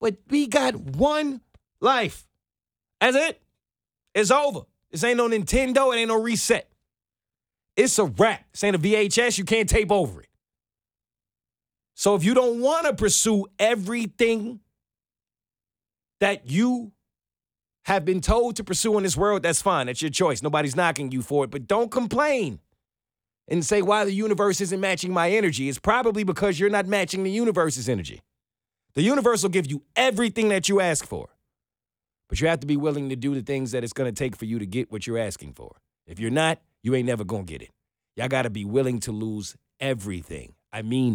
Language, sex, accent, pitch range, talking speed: English, male, American, 130-210 Hz, 190 wpm